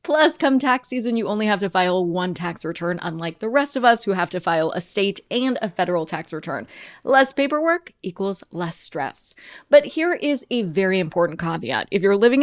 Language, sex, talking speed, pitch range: English, female, 210 wpm, 185-245 Hz